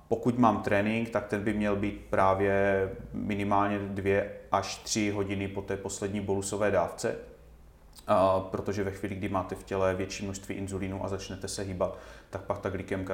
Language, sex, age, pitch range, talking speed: Czech, male, 30-49, 95-100 Hz, 170 wpm